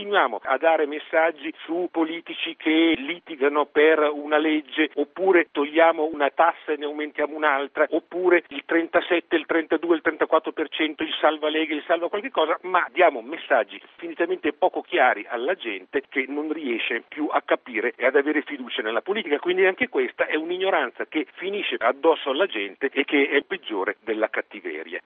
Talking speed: 165 wpm